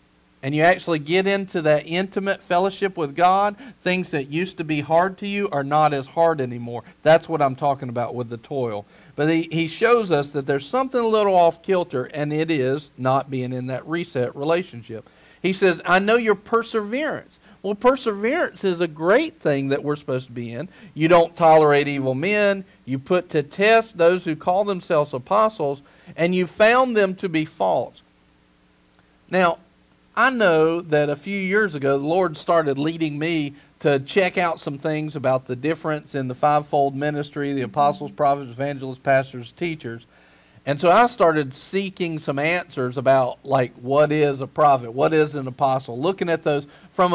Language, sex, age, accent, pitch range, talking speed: English, male, 50-69, American, 140-180 Hz, 180 wpm